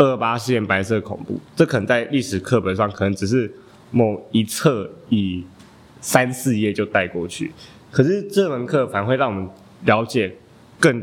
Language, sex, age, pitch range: Chinese, male, 20-39, 100-125 Hz